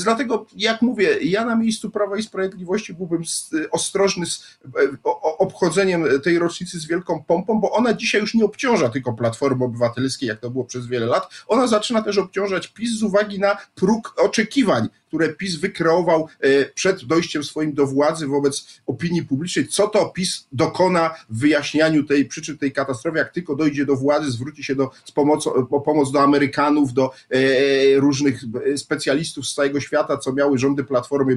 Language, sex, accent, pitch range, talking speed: Polish, male, native, 140-195 Hz, 170 wpm